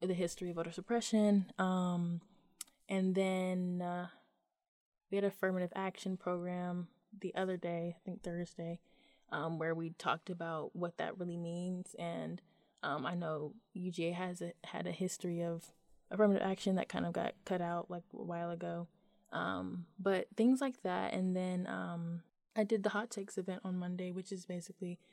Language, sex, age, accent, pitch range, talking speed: English, female, 20-39, American, 175-205 Hz, 170 wpm